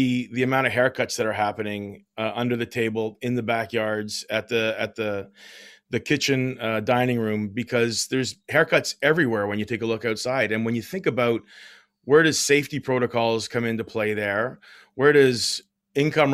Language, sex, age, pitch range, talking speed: English, male, 30-49, 110-130 Hz, 180 wpm